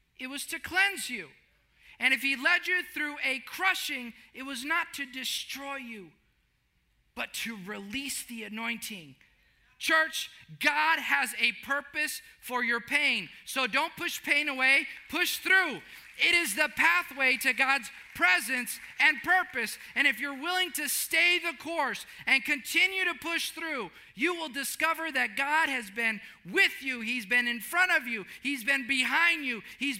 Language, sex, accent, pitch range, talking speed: English, male, American, 255-335 Hz, 160 wpm